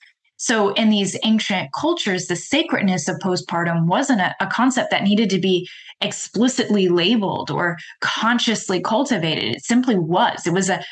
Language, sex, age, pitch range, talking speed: English, female, 20-39, 175-220 Hz, 155 wpm